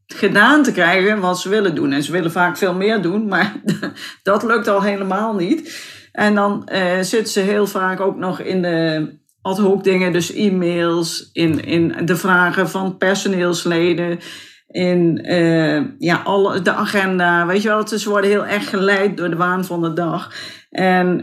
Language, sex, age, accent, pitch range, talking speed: Dutch, female, 40-59, Dutch, 175-205 Hz, 170 wpm